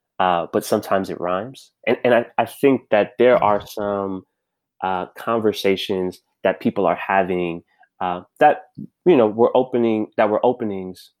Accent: American